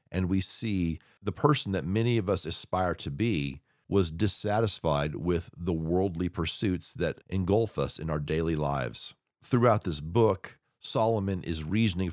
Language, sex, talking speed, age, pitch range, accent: English, male, 155 wpm, 40-59, 85-110 Hz, American